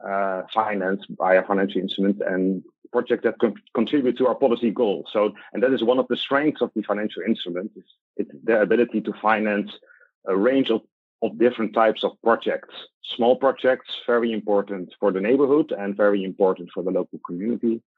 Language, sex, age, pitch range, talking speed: English, male, 40-59, 100-125 Hz, 185 wpm